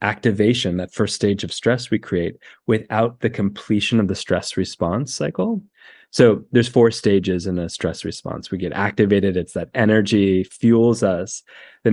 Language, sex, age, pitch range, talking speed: English, male, 20-39, 95-120 Hz, 165 wpm